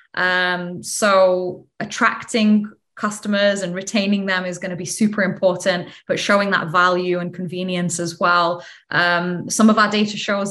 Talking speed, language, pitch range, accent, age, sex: 155 wpm, English, 180-210 Hz, British, 20-39, female